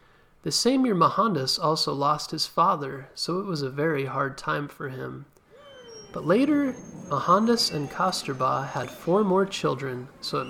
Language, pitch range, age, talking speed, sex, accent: English, 140-185 Hz, 30-49, 160 wpm, male, American